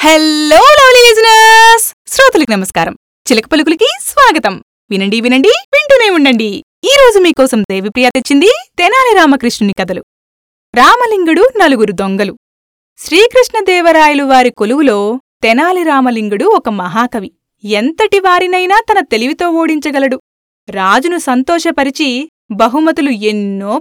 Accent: native